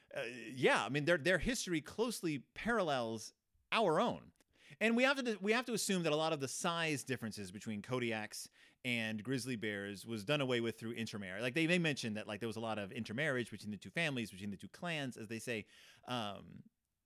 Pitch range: 110-175 Hz